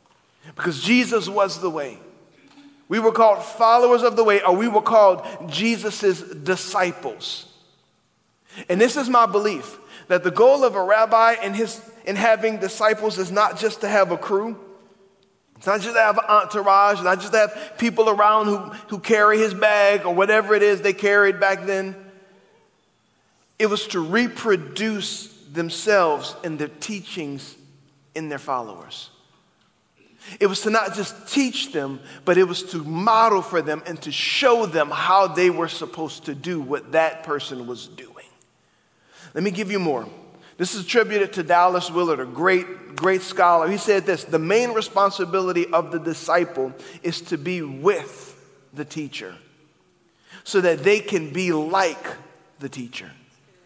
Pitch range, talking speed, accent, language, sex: 175-215 Hz, 160 wpm, American, English, male